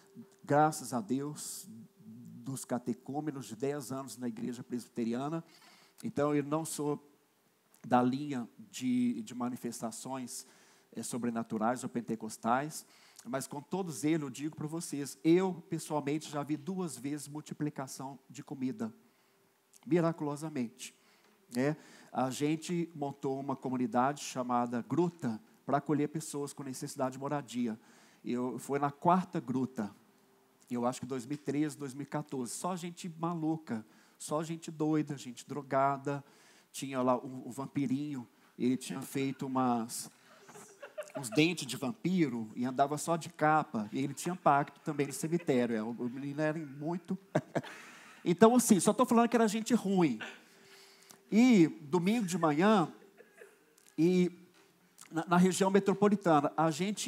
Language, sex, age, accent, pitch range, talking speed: Portuguese, male, 50-69, Brazilian, 130-175 Hz, 130 wpm